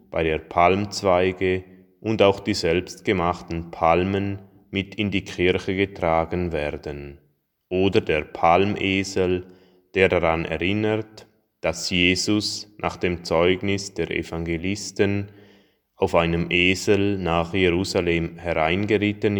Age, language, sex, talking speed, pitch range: 20-39, German, male, 100 wpm, 85-100 Hz